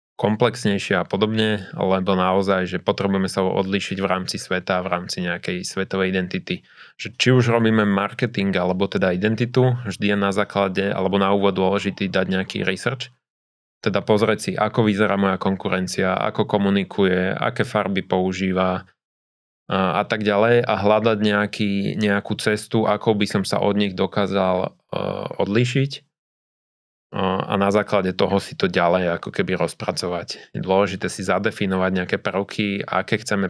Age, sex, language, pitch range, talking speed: 20-39, male, Slovak, 95-110 Hz, 150 wpm